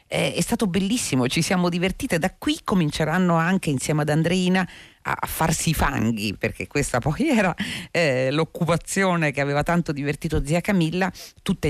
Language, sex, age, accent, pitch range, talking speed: Italian, female, 40-59, native, 130-180 Hz, 155 wpm